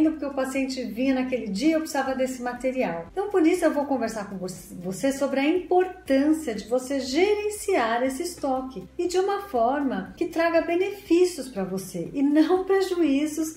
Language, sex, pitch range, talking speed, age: Portuguese, female, 230-320 Hz, 170 wpm, 40-59